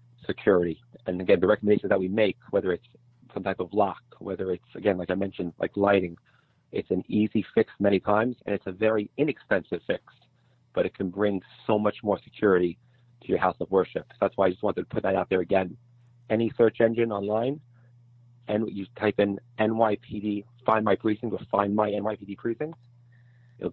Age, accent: 40-59, American